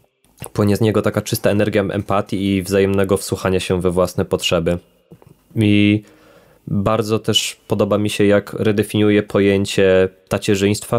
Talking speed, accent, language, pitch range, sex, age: 130 wpm, native, Polish, 95-110 Hz, male, 20-39